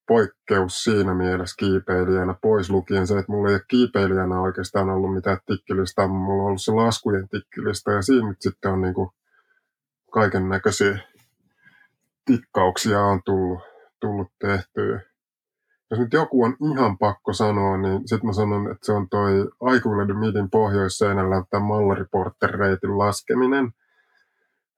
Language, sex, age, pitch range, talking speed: Finnish, male, 20-39, 95-110 Hz, 130 wpm